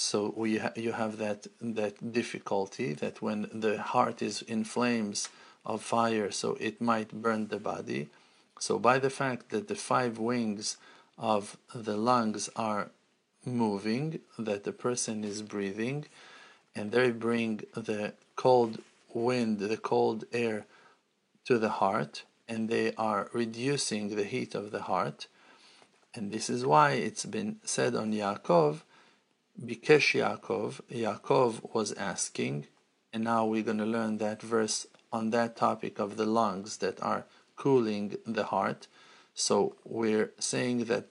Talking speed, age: 140 wpm, 50-69